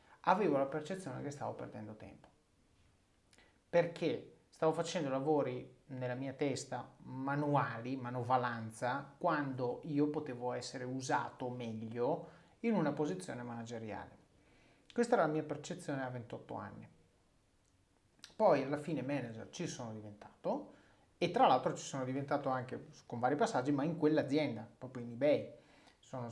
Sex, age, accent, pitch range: male, 30-49, native, 120-170 Hz